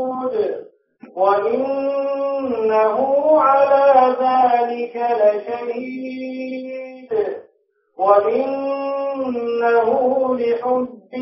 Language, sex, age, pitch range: English, male, 40-59, 210-270 Hz